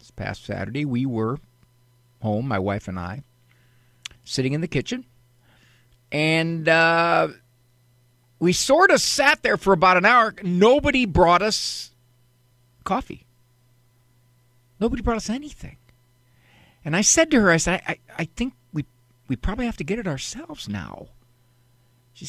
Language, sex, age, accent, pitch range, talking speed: English, male, 50-69, American, 125-180 Hz, 145 wpm